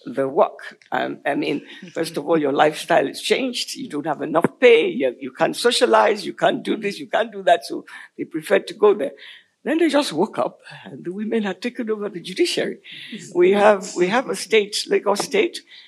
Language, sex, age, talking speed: Filipino, female, 60-79, 210 wpm